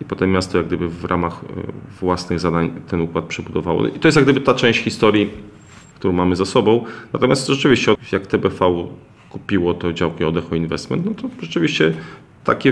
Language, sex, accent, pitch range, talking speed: Polish, male, native, 95-115 Hz, 175 wpm